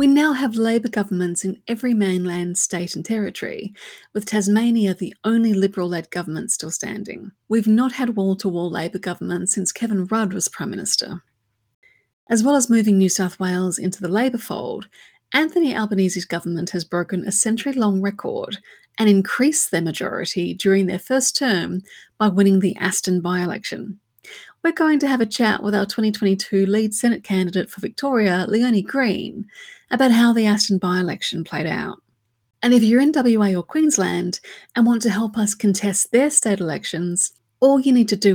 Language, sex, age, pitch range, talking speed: English, female, 30-49, 180-235 Hz, 165 wpm